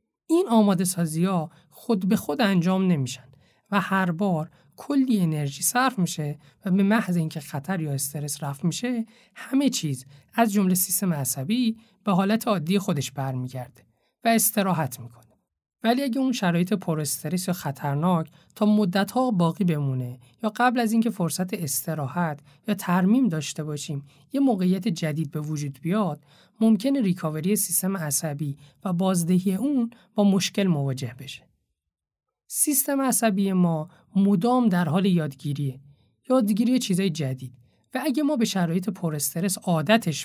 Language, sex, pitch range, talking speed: Persian, male, 150-215 Hz, 140 wpm